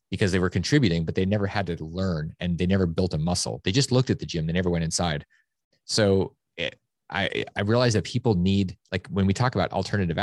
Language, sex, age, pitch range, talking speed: English, male, 30-49, 85-100 Hz, 230 wpm